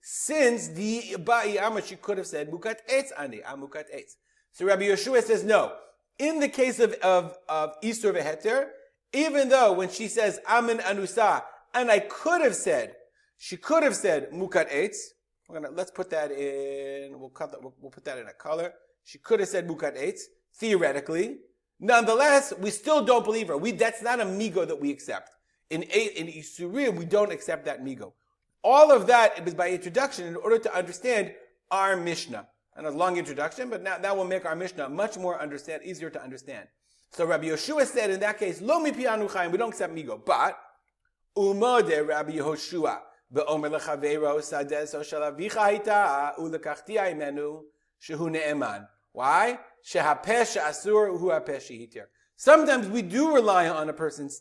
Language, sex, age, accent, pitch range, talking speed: English, male, 30-49, American, 155-250 Hz, 170 wpm